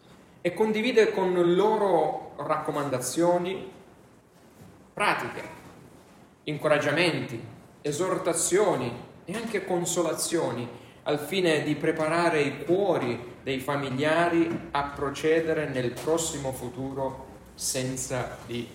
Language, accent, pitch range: Italian, native, 135-175 Hz